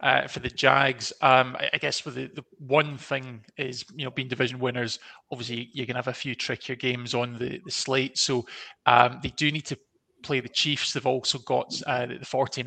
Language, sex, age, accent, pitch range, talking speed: English, male, 20-39, British, 125-145 Hz, 225 wpm